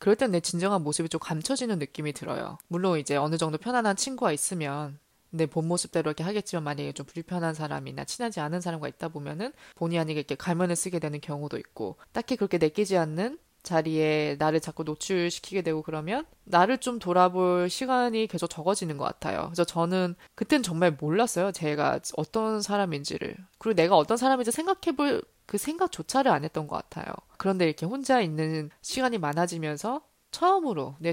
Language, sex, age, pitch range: Korean, female, 20-39, 160-225 Hz